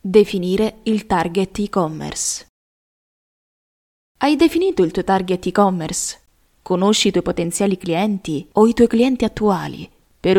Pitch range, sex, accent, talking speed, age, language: 175-220 Hz, female, native, 120 wpm, 20-39, Italian